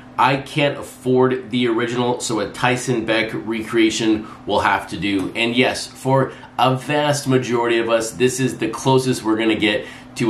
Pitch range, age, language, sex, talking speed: 110-130 Hz, 30-49, English, male, 180 wpm